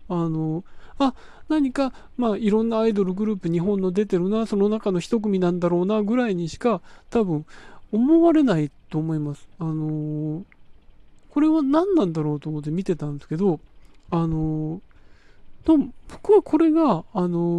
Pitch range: 155-235 Hz